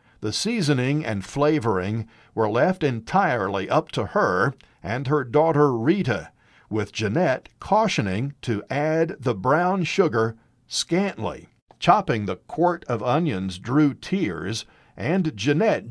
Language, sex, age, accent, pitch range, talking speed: English, male, 50-69, American, 115-165 Hz, 120 wpm